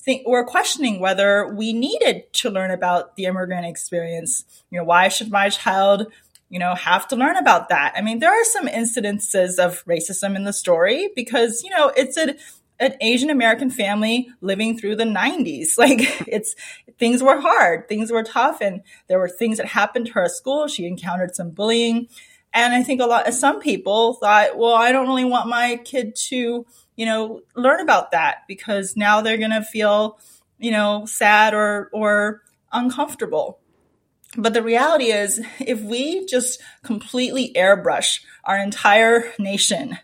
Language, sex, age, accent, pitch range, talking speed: English, female, 30-49, American, 200-250 Hz, 170 wpm